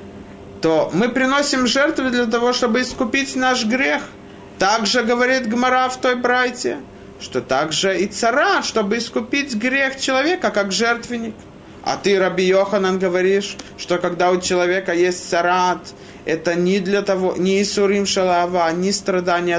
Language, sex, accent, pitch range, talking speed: Russian, male, native, 165-215 Hz, 145 wpm